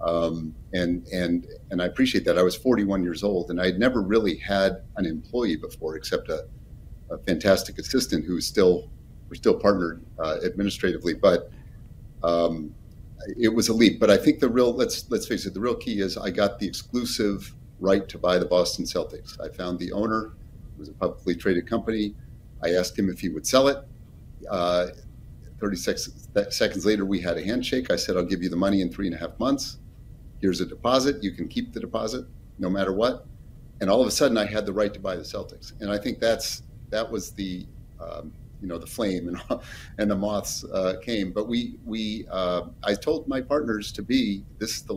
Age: 50-69